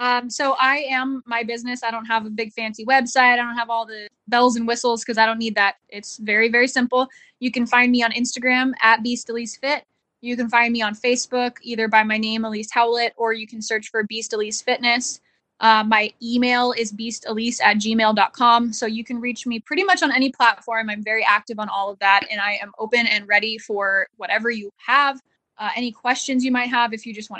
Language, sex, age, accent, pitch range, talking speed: English, female, 10-29, American, 215-245 Hz, 230 wpm